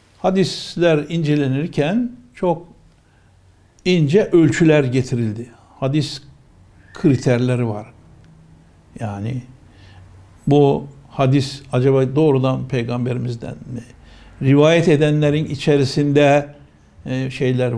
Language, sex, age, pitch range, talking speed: Turkish, male, 60-79, 125-160 Hz, 70 wpm